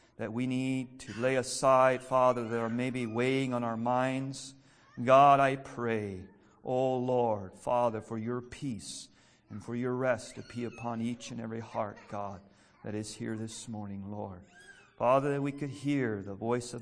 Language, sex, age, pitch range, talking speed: English, male, 50-69, 115-145 Hz, 175 wpm